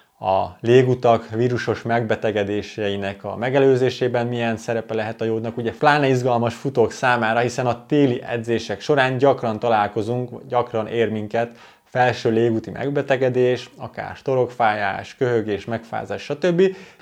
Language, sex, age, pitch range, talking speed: Hungarian, male, 20-39, 110-130 Hz, 120 wpm